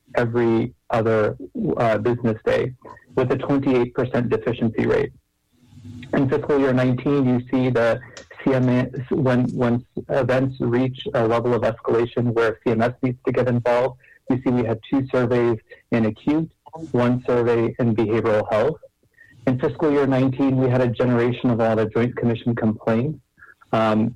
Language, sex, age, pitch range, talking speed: English, male, 30-49, 115-130 Hz, 150 wpm